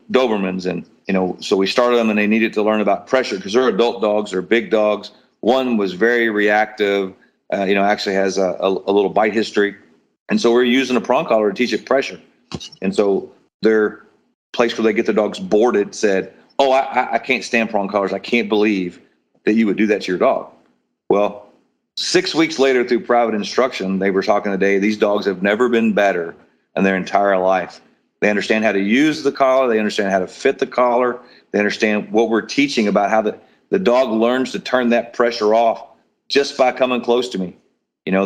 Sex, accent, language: male, American, English